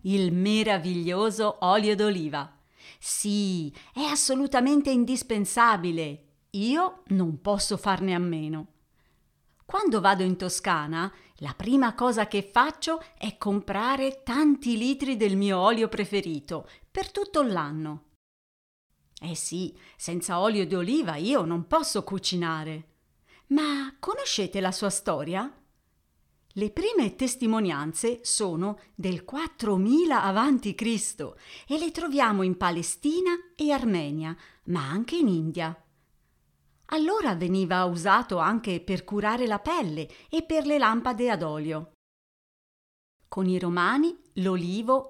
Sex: female